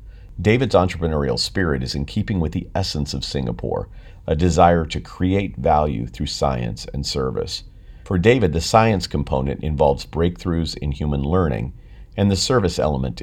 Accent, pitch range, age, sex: American, 70-95 Hz, 50-69, male